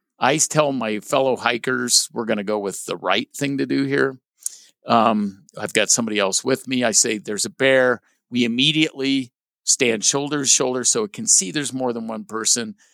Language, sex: English, male